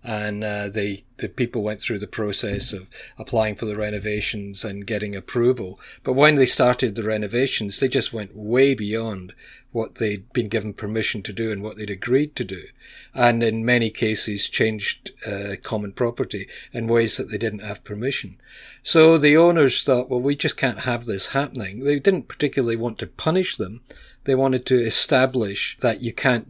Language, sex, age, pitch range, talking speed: English, male, 50-69, 105-130 Hz, 180 wpm